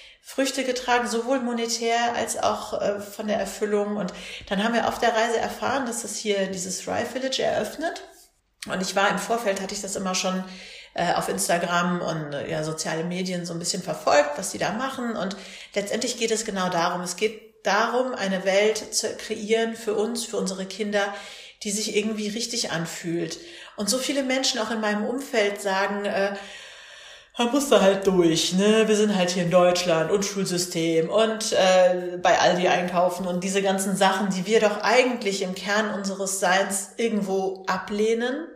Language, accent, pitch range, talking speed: German, German, 185-220 Hz, 180 wpm